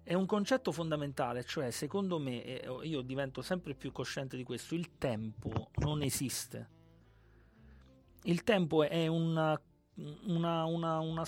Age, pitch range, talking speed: 40-59, 135-170 Hz, 120 wpm